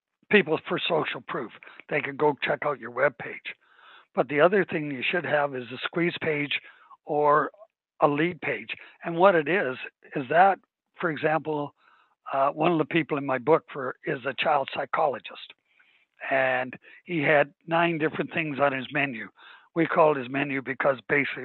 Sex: male